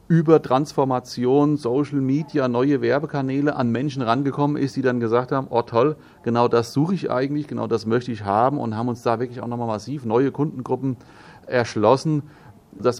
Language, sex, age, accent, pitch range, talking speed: German, male, 40-59, German, 115-140 Hz, 175 wpm